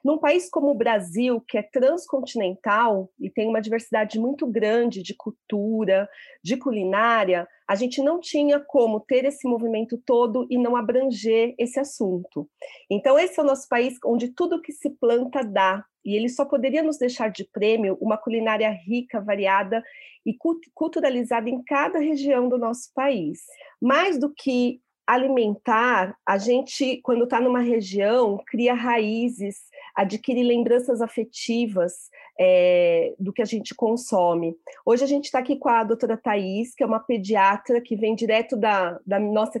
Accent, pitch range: Brazilian, 215-265 Hz